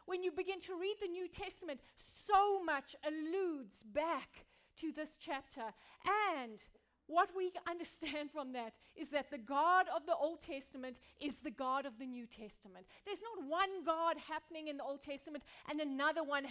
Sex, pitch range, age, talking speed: female, 265-350 Hz, 30-49, 175 wpm